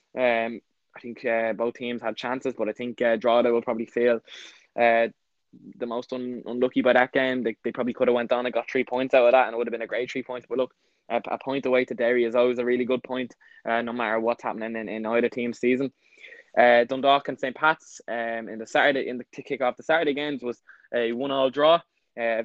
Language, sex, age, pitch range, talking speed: English, male, 10-29, 115-130 Hz, 260 wpm